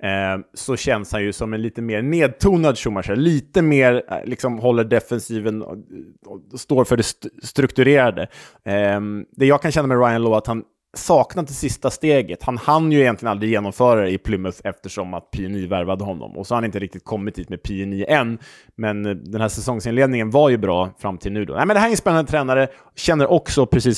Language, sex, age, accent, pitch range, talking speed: Swedish, male, 20-39, Norwegian, 105-135 Hz, 200 wpm